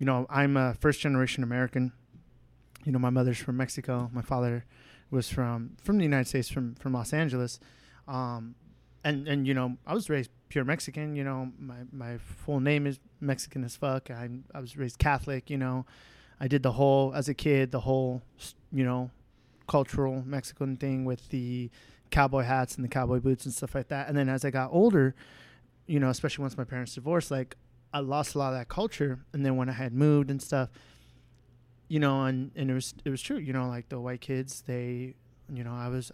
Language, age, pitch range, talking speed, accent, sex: English, 20-39, 125-140 Hz, 210 wpm, American, male